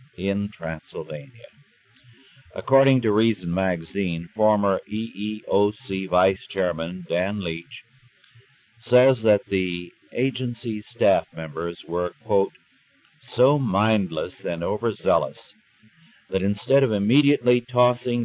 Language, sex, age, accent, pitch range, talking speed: English, male, 60-79, American, 90-120 Hz, 95 wpm